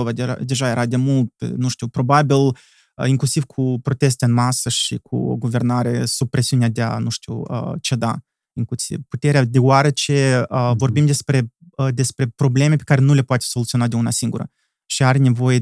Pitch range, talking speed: 130-170 Hz, 160 wpm